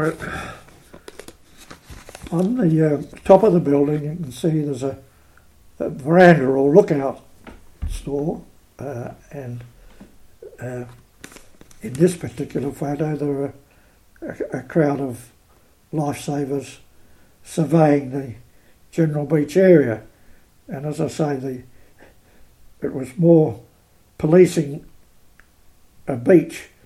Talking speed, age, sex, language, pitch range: 105 wpm, 60-79, male, English, 125-160 Hz